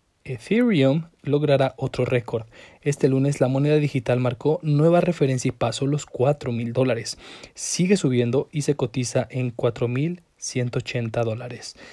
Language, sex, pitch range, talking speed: Spanish, male, 115-140 Hz, 125 wpm